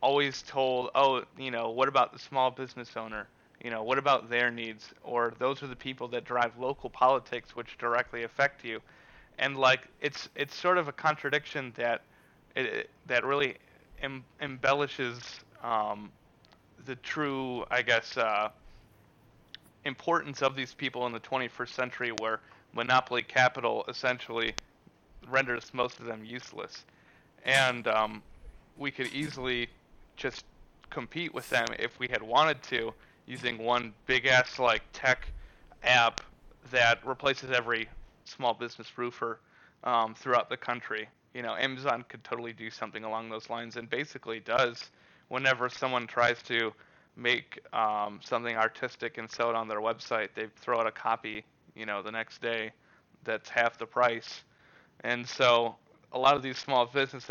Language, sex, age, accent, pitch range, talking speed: English, male, 30-49, American, 115-130 Hz, 155 wpm